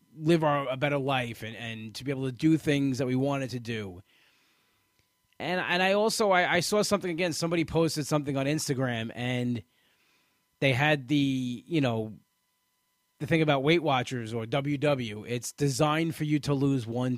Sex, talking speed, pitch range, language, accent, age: male, 180 wpm, 120-150 Hz, English, American, 20-39